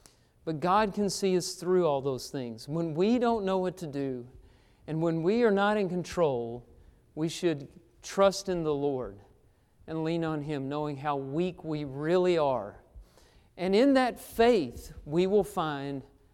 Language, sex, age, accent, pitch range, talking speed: English, male, 50-69, American, 150-195 Hz, 170 wpm